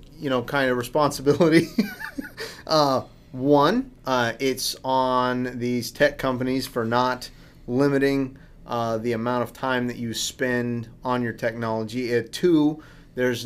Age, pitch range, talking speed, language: 30-49, 115-145 Hz, 135 wpm, English